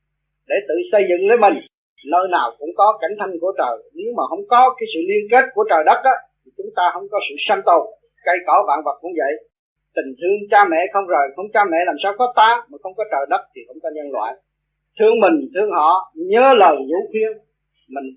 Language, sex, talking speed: Vietnamese, male, 235 wpm